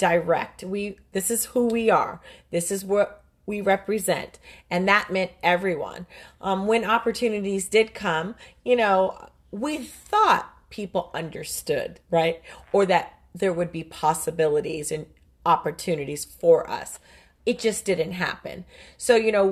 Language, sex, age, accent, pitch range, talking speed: English, female, 40-59, American, 175-230 Hz, 140 wpm